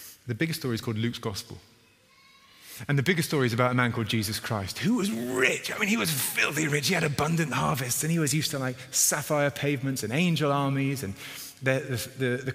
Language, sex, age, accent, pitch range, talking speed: English, male, 30-49, British, 100-135 Hz, 225 wpm